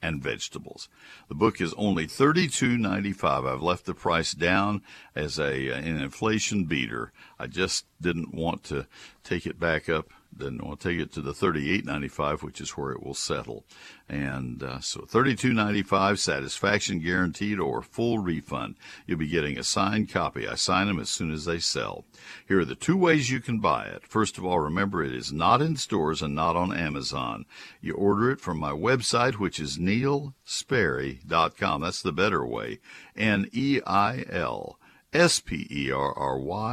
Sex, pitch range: male, 80-120 Hz